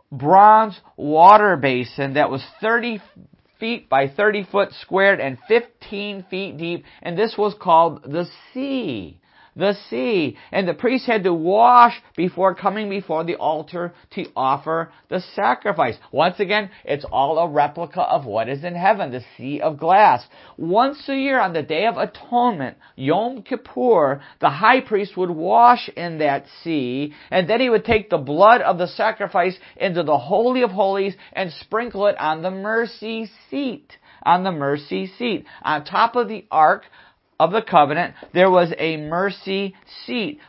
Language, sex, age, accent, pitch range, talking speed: English, male, 50-69, American, 165-215 Hz, 165 wpm